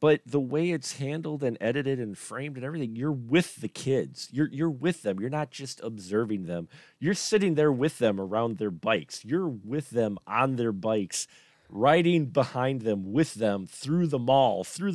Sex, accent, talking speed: male, American, 190 wpm